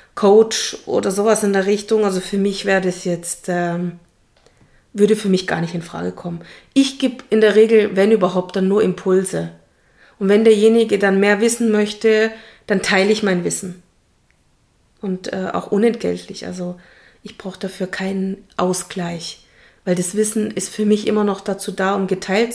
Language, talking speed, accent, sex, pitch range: German, 170 wpm, German, female, 180-215 Hz